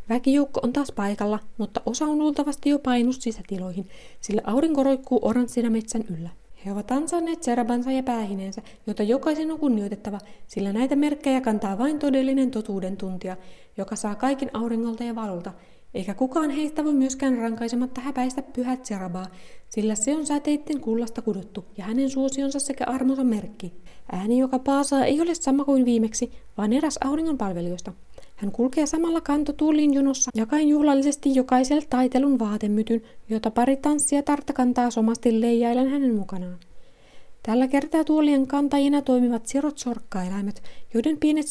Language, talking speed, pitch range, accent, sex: Finnish, 145 wpm, 220-280 Hz, native, female